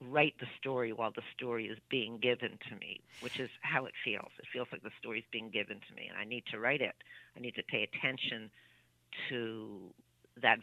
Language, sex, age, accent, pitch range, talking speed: English, female, 50-69, American, 125-175 Hz, 220 wpm